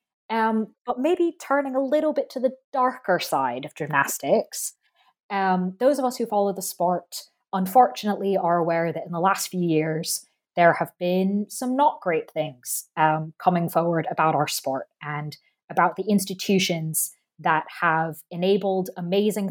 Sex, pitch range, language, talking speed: female, 170-205 Hz, English, 155 wpm